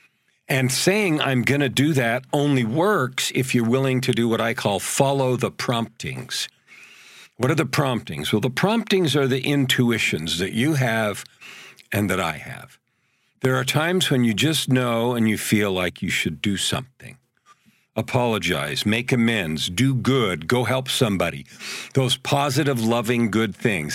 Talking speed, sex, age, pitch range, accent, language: 165 wpm, male, 50-69, 115-135 Hz, American, English